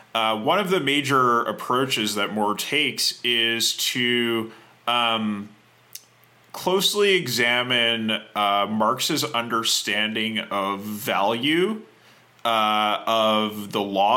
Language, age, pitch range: English, 30-49, 110-135 Hz